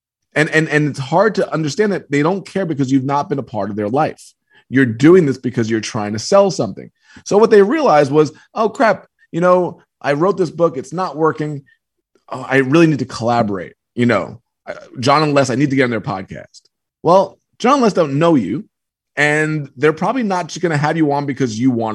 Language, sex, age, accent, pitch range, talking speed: English, male, 30-49, American, 130-170 Hz, 225 wpm